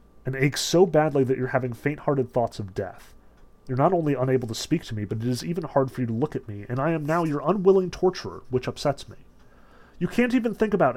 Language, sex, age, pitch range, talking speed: English, male, 30-49, 115-145 Hz, 245 wpm